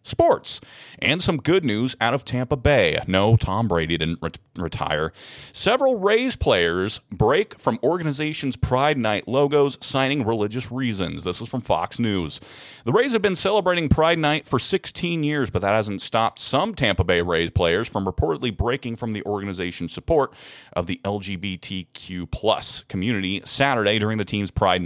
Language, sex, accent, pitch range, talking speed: English, male, American, 95-140 Hz, 160 wpm